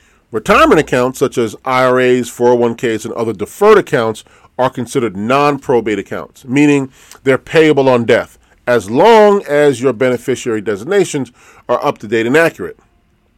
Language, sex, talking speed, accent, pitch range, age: English, male, 130 wpm, American, 115-145 Hz, 40-59